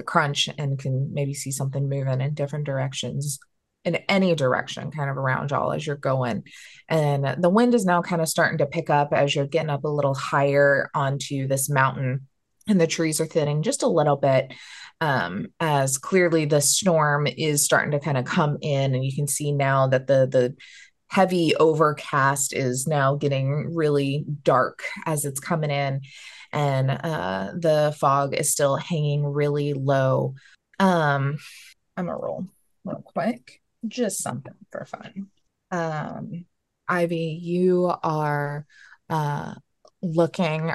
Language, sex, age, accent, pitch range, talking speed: English, female, 20-39, American, 140-165 Hz, 160 wpm